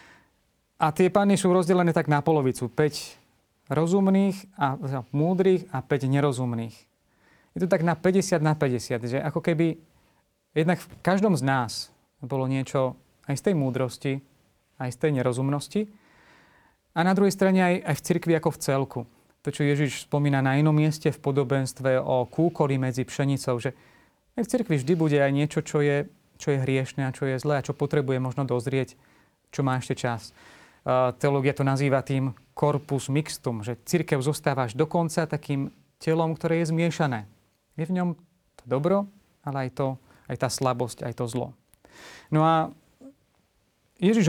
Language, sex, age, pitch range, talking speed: Slovak, male, 30-49, 130-160 Hz, 170 wpm